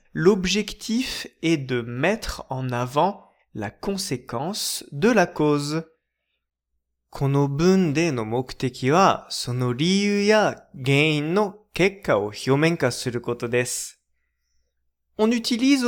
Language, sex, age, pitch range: Japanese, male, 20-39, 120-195 Hz